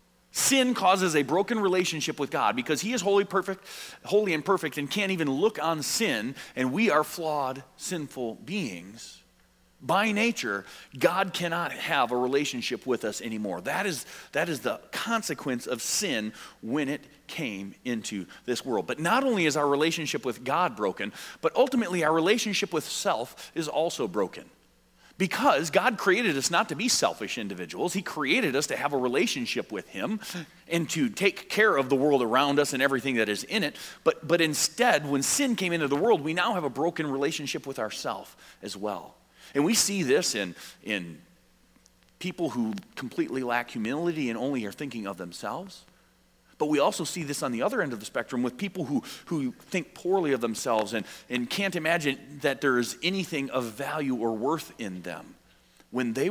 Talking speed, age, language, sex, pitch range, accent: 185 wpm, 30-49, English, male, 125-190 Hz, American